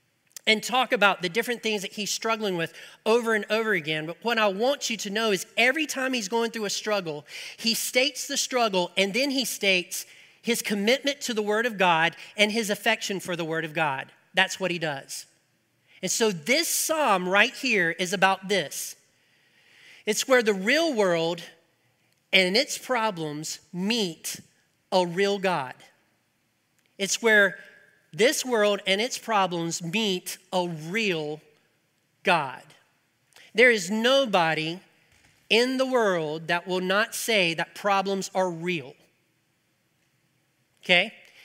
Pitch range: 175-230 Hz